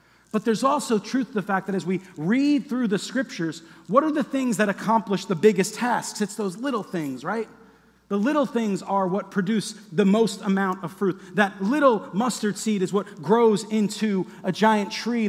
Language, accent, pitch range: English, American, 190-230 Hz